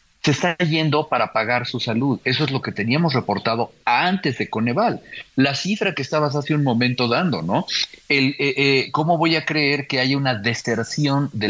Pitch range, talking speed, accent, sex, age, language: 115-155 Hz, 195 wpm, Mexican, male, 50-69, Spanish